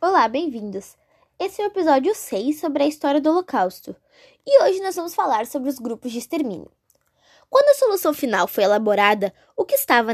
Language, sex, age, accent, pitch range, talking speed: Portuguese, female, 10-29, Brazilian, 235-350 Hz, 185 wpm